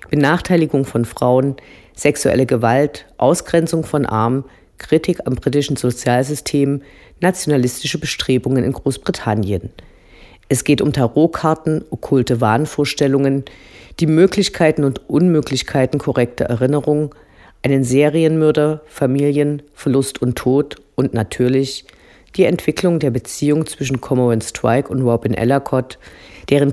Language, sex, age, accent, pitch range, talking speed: German, female, 50-69, German, 125-155 Hz, 105 wpm